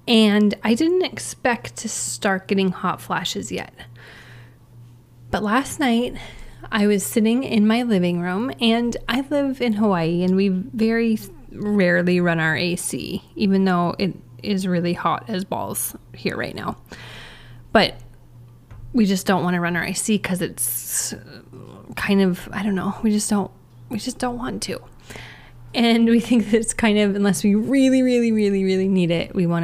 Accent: American